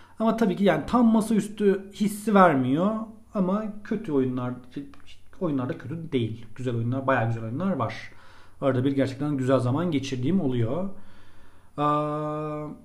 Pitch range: 125-180 Hz